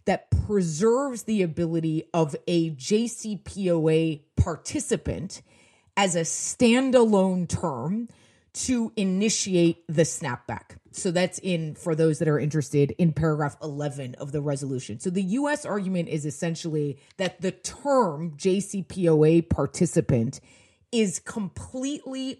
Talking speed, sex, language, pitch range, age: 115 wpm, female, English, 155-200 Hz, 30-49